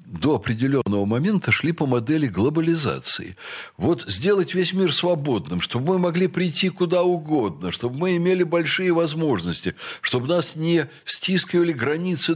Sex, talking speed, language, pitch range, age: male, 135 wpm, Russian, 110-175 Hz, 60-79